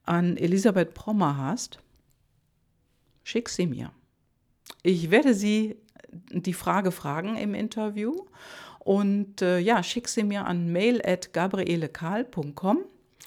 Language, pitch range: German, 165-225 Hz